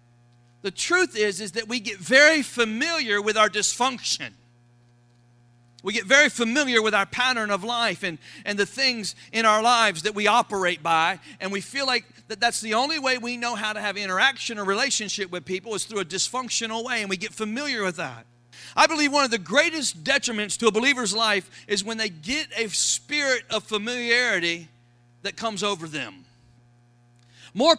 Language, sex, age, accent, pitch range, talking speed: English, male, 50-69, American, 190-240 Hz, 185 wpm